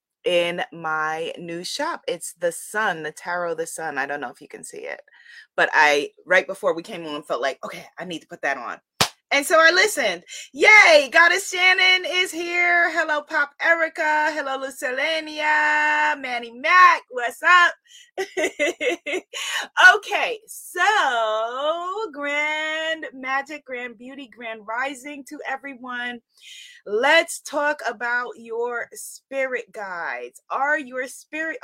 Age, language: 30-49, English